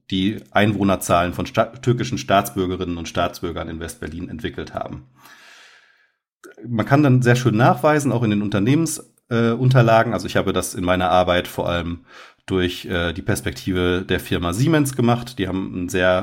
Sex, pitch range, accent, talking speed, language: male, 90-115 Hz, German, 165 wpm, German